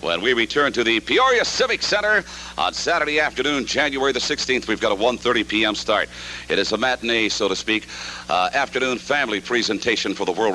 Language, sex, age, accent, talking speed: English, male, 60-79, American, 195 wpm